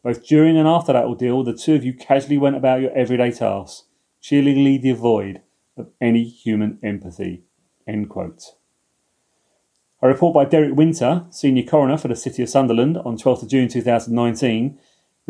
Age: 30-49